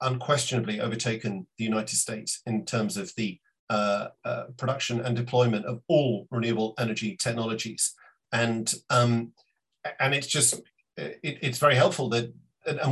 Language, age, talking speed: English, 50-69, 140 wpm